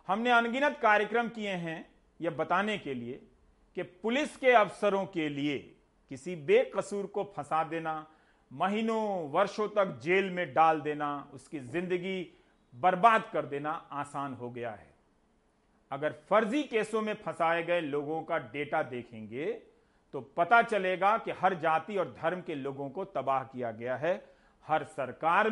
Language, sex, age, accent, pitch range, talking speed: Hindi, male, 50-69, native, 155-215 Hz, 150 wpm